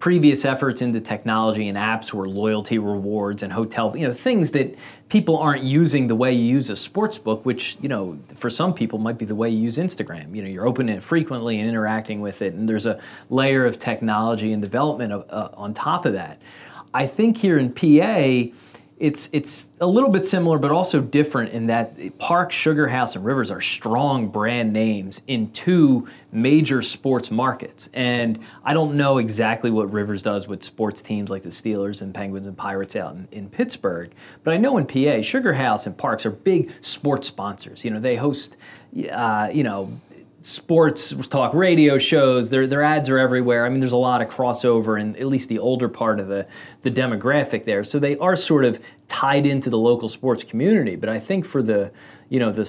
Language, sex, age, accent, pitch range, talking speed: English, male, 30-49, American, 110-145 Hz, 200 wpm